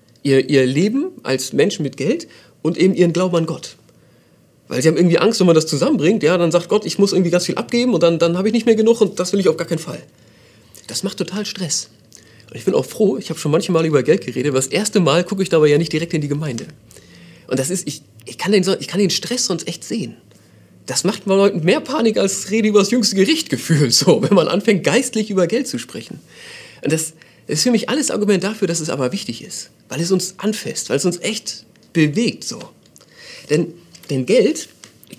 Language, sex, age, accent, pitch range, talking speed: German, male, 40-59, German, 145-205 Hz, 235 wpm